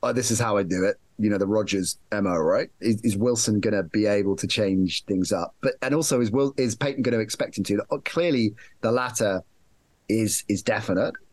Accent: British